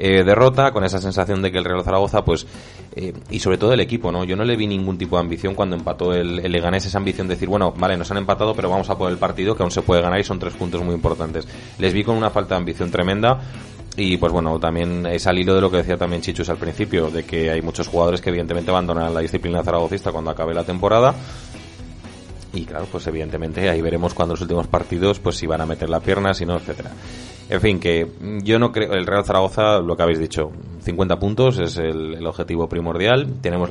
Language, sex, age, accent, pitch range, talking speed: Spanish, male, 30-49, Spanish, 85-100 Hz, 240 wpm